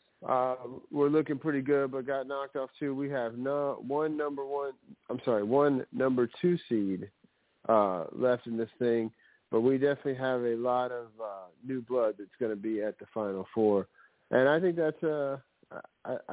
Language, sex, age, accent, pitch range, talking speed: English, male, 40-59, American, 110-135 Hz, 185 wpm